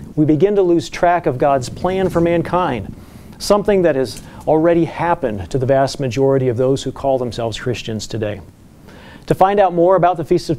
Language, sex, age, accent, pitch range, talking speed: English, male, 40-59, American, 125-165 Hz, 195 wpm